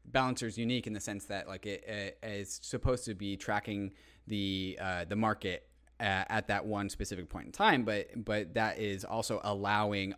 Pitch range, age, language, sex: 95-115 Hz, 20-39, English, male